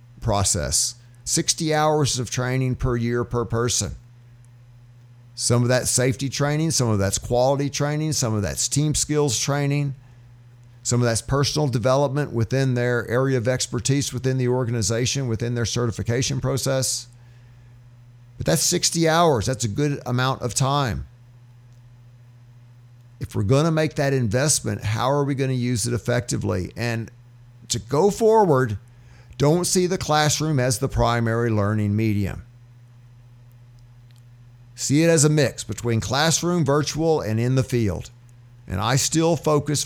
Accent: American